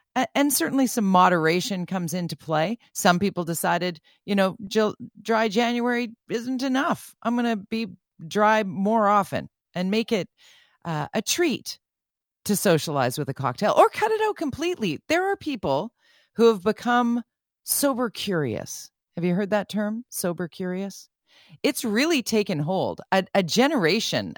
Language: English